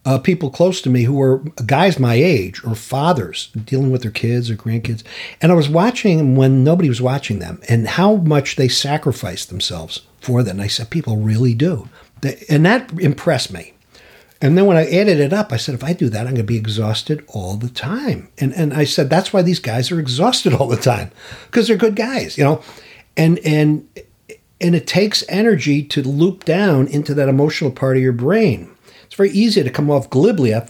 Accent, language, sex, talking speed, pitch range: American, English, male, 215 wpm, 115-170 Hz